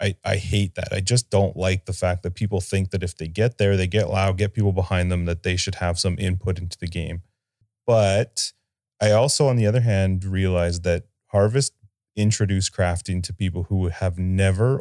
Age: 30-49